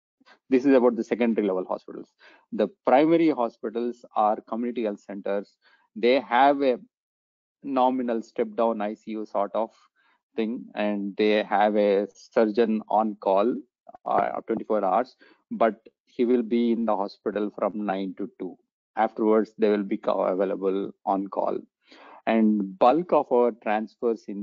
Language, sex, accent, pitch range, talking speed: English, male, Indian, 105-125 Hz, 140 wpm